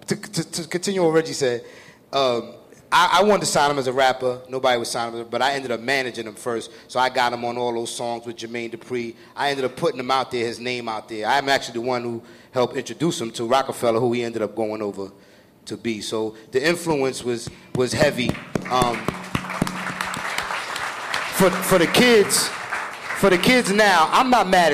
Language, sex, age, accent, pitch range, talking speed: English, male, 30-49, American, 125-185 Hz, 210 wpm